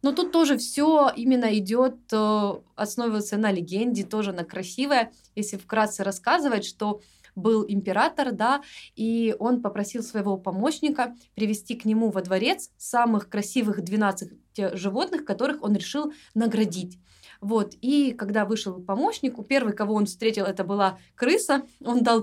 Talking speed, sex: 140 wpm, female